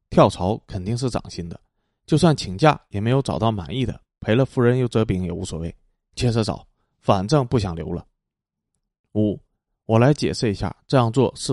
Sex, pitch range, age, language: male, 100-130 Hz, 30-49, Chinese